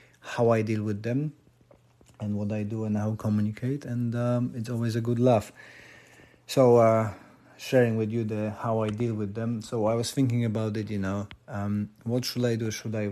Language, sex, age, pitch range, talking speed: English, male, 30-49, 105-120 Hz, 210 wpm